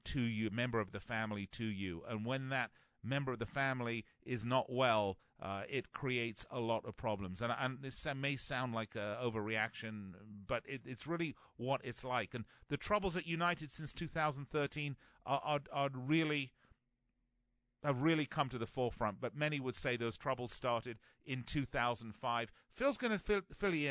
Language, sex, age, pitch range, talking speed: English, male, 40-59, 120-150 Hz, 190 wpm